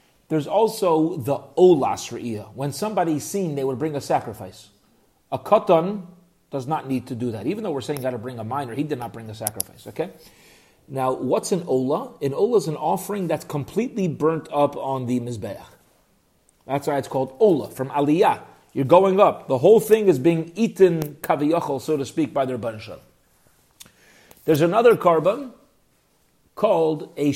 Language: English